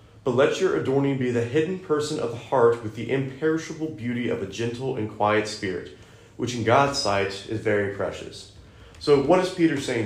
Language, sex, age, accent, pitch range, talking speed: English, male, 30-49, American, 110-130 Hz, 195 wpm